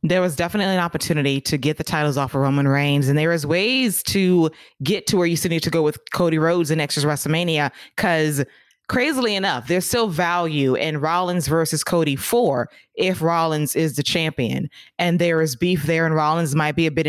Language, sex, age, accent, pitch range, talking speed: English, female, 20-39, American, 155-180 Hz, 205 wpm